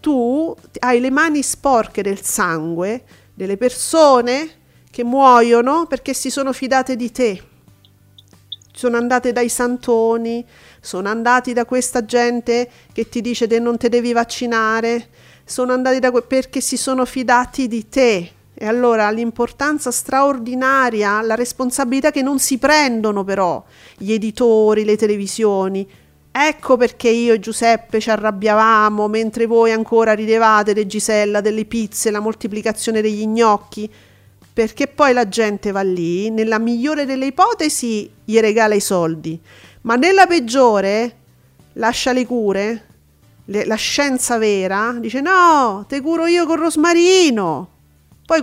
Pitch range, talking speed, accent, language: 210-255 Hz, 140 wpm, native, Italian